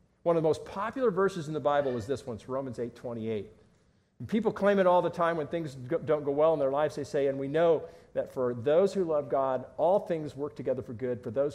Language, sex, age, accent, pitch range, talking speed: English, male, 40-59, American, 135-200 Hz, 260 wpm